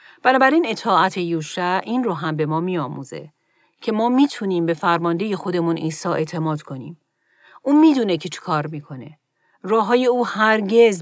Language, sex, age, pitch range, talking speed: Persian, female, 40-59, 160-210 Hz, 170 wpm